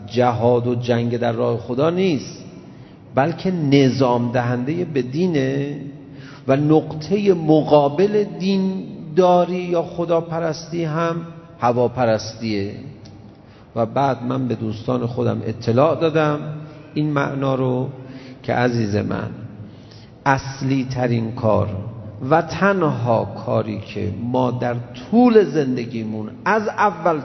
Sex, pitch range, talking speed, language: male, 115-180 Hz, 105 wpm, Persian